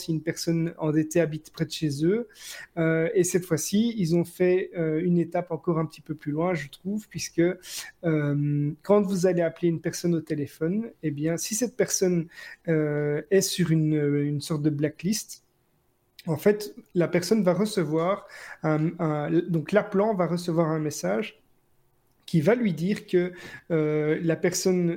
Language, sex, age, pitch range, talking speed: French, male, 30-49, 155-180 Hz, 175 wpm